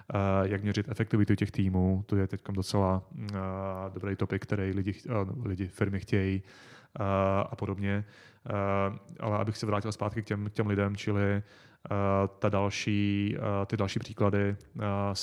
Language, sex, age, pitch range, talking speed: Czech, male, 30-49, 100-105 Hz, 160 wpm